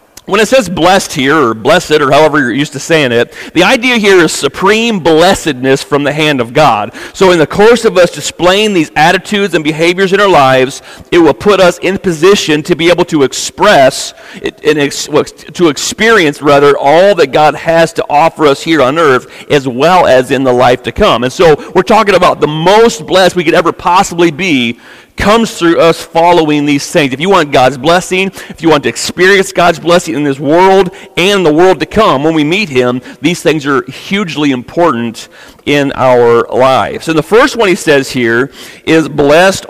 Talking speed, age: 200 wpm, 40-59